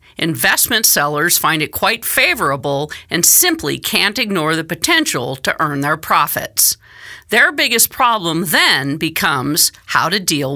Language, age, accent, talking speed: English, 50-69, American, 135 wpm